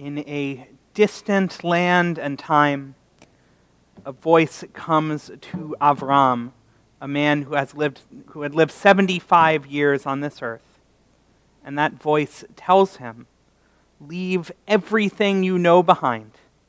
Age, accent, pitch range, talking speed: 30-49, American, 135-175 Hz, 120 wpm